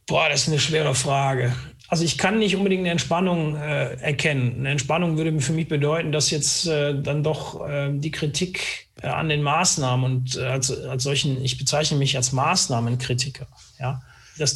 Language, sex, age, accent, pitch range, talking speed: German, male, 40-59, German, 135-155 Hz, 185 wpm